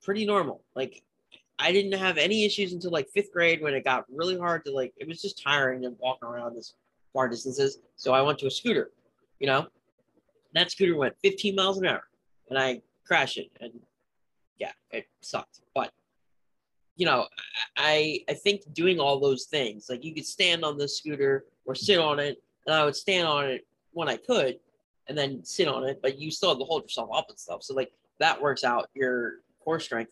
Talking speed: 205 wpm